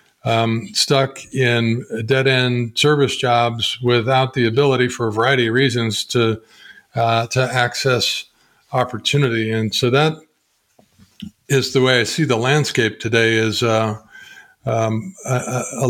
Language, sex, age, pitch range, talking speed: English, male, 50-69, 115-135 Hz, 130 wpm